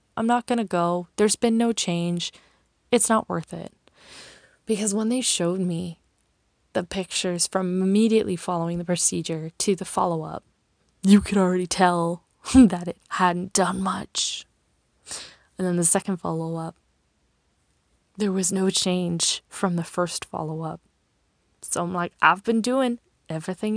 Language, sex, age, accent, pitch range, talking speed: English, female, 20-39, American, 170-215 Hz, 145 wpm